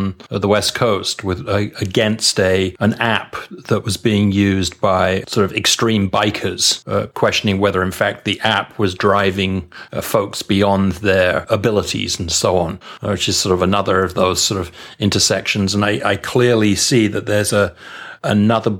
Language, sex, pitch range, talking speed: English, male, 100-115 Hz, 170 wpm